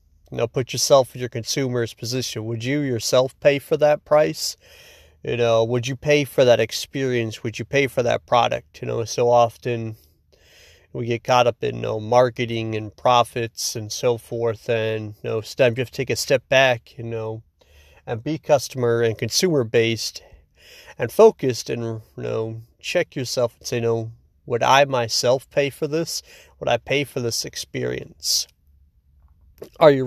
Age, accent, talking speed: 40-59, American, 185 wpm